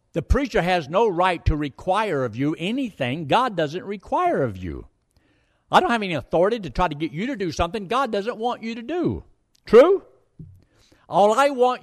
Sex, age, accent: male, 60-79, American